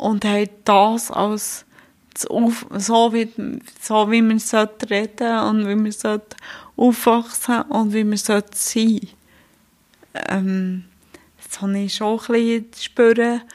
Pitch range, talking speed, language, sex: 200-230 Hz, 135 wpm, German, female